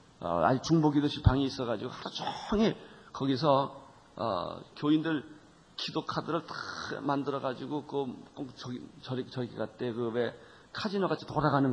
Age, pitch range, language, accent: 40-59, 125-160 Hz, Korean, native